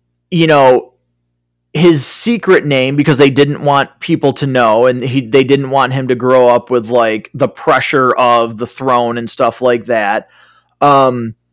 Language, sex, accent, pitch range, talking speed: English, male, American, 125-190 Hz, 165 wpm